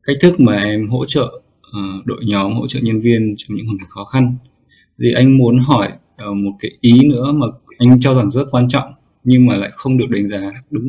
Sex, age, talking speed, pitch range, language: male, 20-39, 235 wpm, 100-130 Hz, Vietnamese